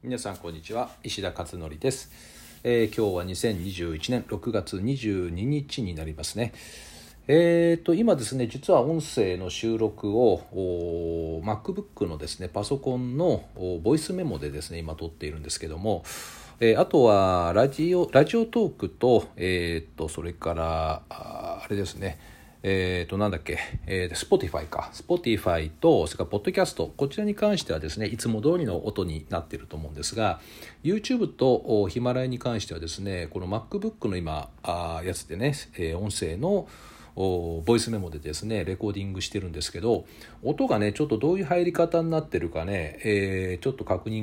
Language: Japanese